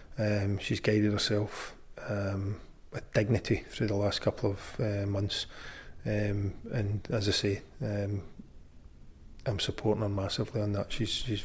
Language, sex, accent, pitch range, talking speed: English, male, British, 100-110 Hz, 145 wpm